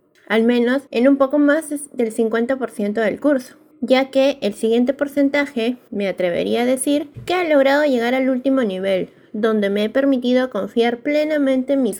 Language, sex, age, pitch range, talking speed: Spanish, female, 20-39, 220-285 Hz, 170 wpm